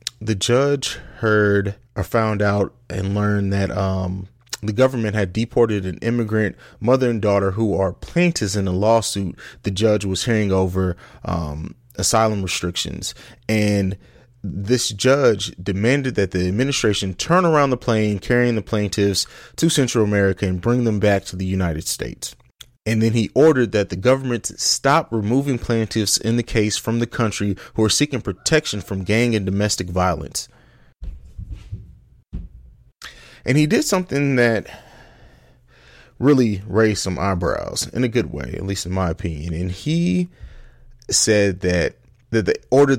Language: English